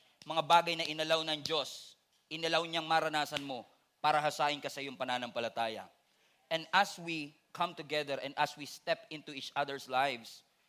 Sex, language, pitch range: male, English, 150-210 Hz